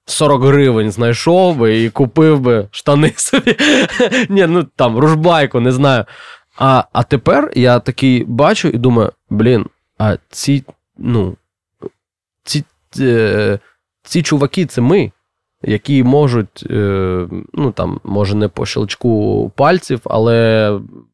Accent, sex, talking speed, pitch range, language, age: native, male, 120 wpm, 110-150 Hz, Ukrainian, 20-39